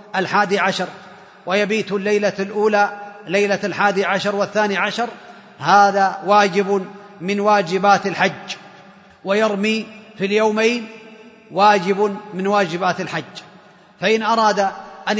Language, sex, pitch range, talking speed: Arabic, male, 190-210 Hz, 100 wpm